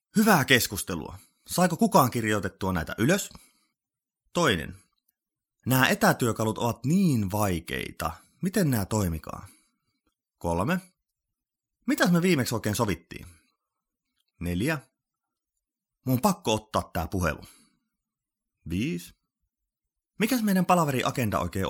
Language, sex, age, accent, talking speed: Finnish, male, 30-49, native, 95 wpm